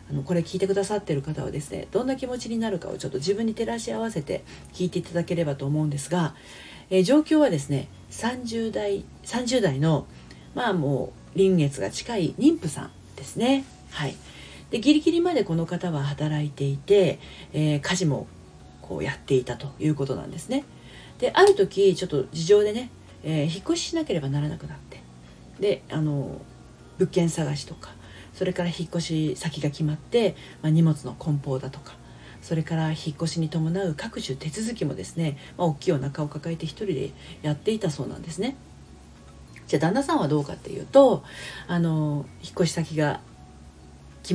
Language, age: Japanese, 40-59